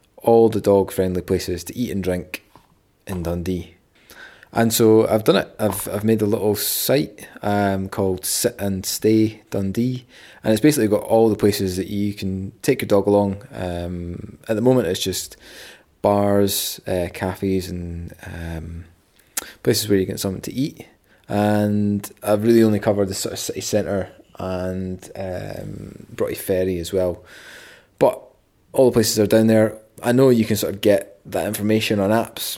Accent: British